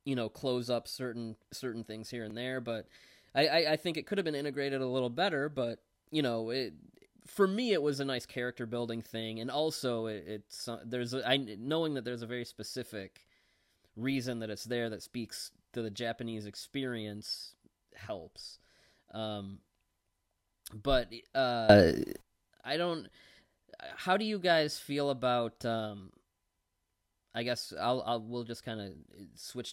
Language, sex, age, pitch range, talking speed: English, male, 20-39, 105-130 Hz, 165 wpm